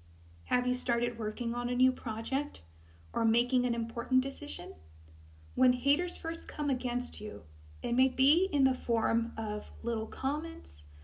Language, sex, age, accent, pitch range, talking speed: English, female, 40-59, American, 210-265 Hz, 150 wpm